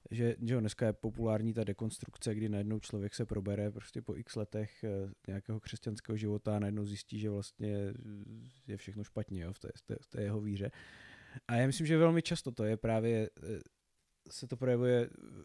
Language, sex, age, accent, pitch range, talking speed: Czech, male, 20-39, native, 110-135 Hz, 180 wpm